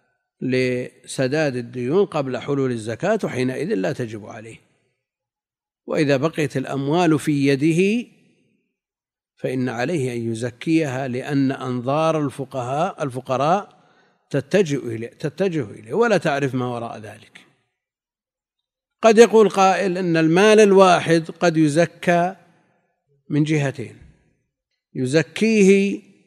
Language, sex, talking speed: Arabic, male, 95 wpm